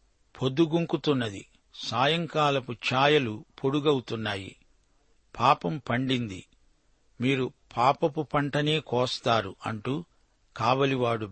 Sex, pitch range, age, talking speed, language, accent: male, 115-140 Hz, 60-79, 65 wpm, Telugu, native